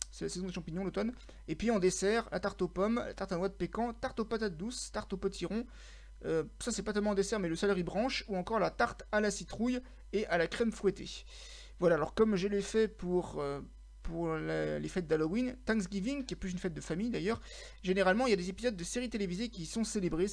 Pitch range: 175-225 Hz